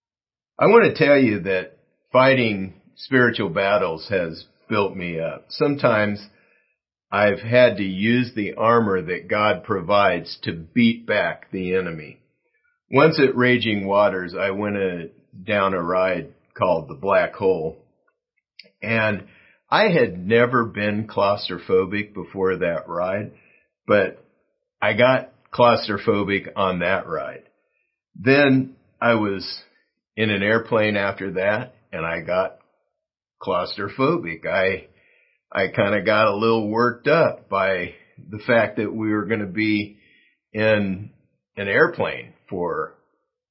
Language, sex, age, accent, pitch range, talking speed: English, male, 50-69, American, 100-125 Hz, 125 wpm